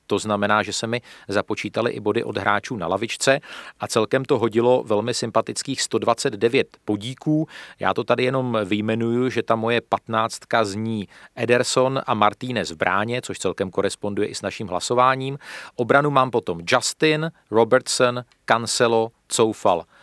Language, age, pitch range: Czech, 40-59, 105-135 Hz